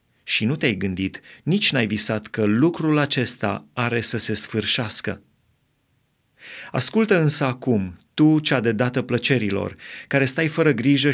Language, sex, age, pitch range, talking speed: Romanian, male, 30-49, 110-145 Hz, 140 wpm